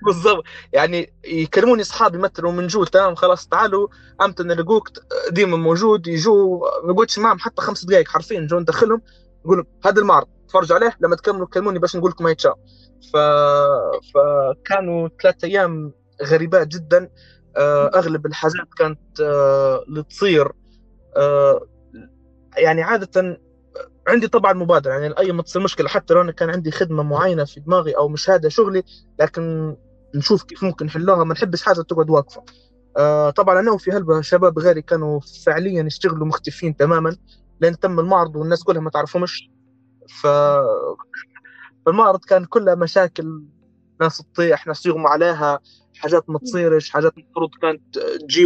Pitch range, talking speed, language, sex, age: 155-190 Hz, 135 wpm, Arabic, male, 20-39